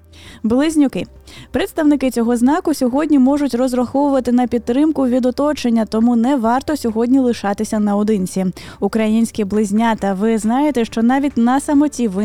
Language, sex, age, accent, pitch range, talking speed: Ukrainian, female, 20-39, native, 210-265 Hz, 125 wpm